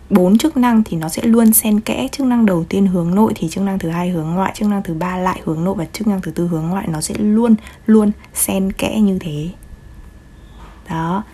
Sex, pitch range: female, 165-215 Hz